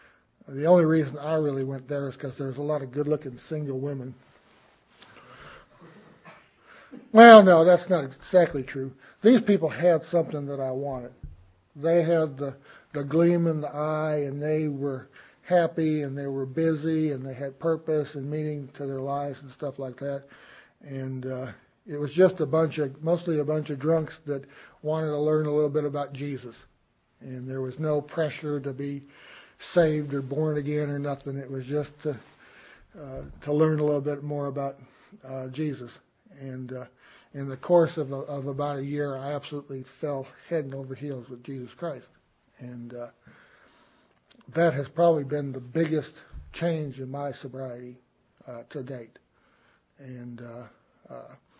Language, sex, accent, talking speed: English, male, American, 165 wpm